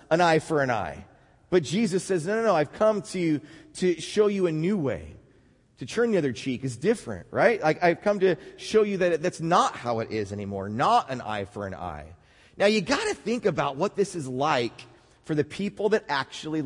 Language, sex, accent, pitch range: English, male, American, 130-190 Hz